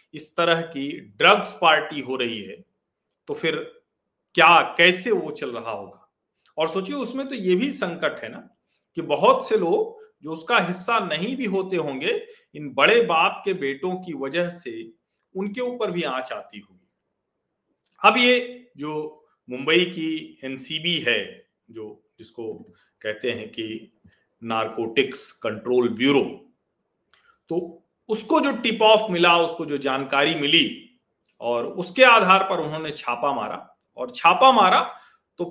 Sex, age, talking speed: male, 40-59, 145 wpm